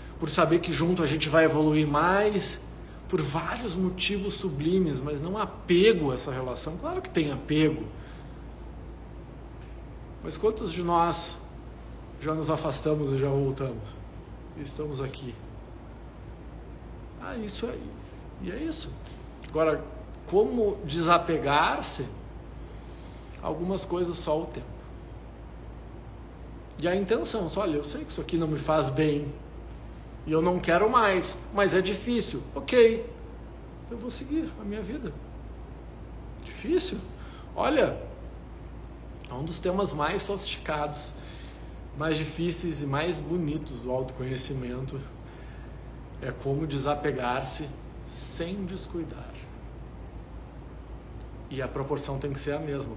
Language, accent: Portuguese, Brazilian